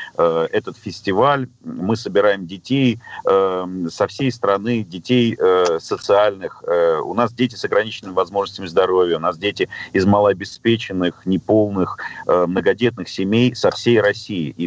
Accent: native